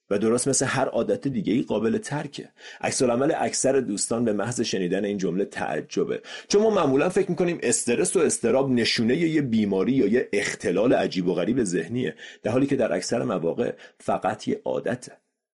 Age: 40-59